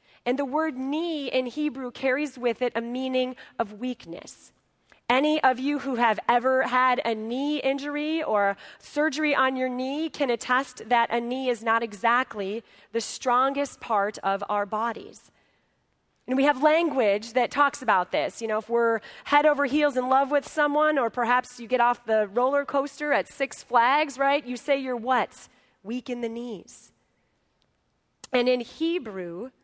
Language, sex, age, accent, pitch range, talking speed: English, female, 30-49, American, 230-280 Hz, 170 wpm